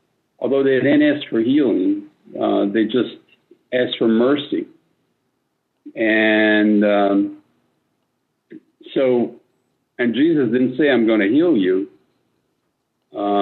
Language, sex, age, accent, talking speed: English, male, 60-79, American, 110 wpm